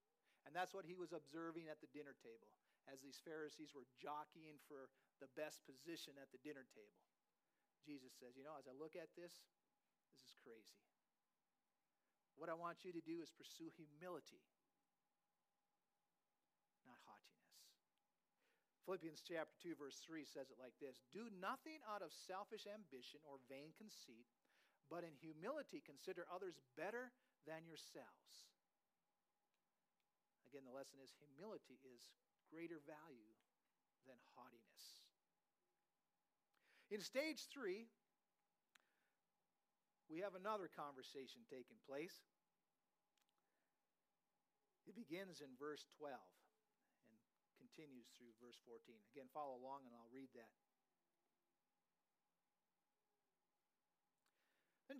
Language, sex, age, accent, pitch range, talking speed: English, male, 50-69, American, 140-205 Hz, 120 wpm